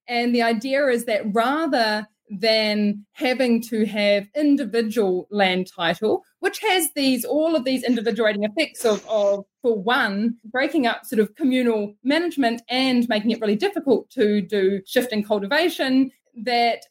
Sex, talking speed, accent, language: female, 145 wpm, Australian, English